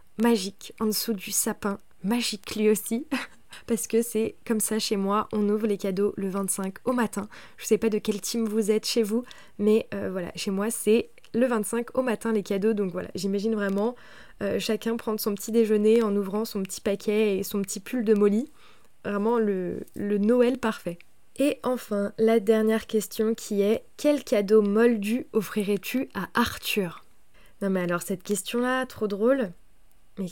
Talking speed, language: 185 wpm, French